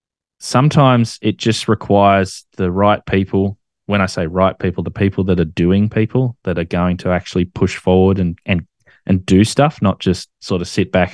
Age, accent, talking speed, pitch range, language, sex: 20-39, Australian, 195 wpm, 90-105 Hz, English, male